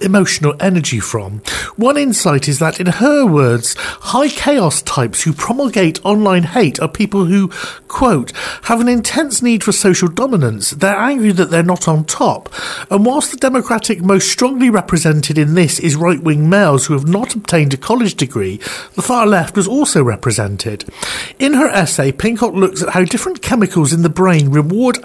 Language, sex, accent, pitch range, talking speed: English, male, British, 155-230 Hz, 175 wpm